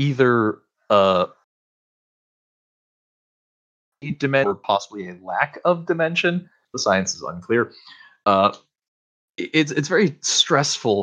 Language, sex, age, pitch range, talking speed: English, male, 30-49, 90-120 Hz, 100 wpm